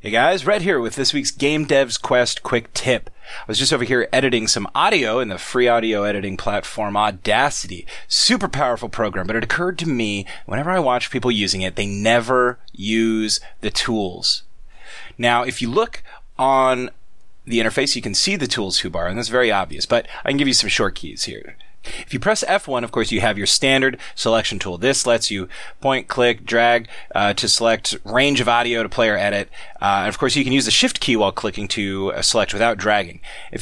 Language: English